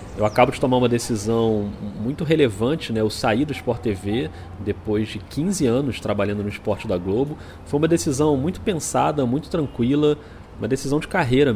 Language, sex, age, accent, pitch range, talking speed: Portuguese, male, 30-49, Brazilian, 110-155 Hz, 175 wpm